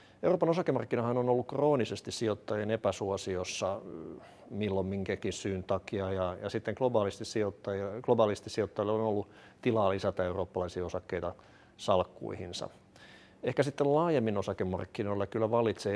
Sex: male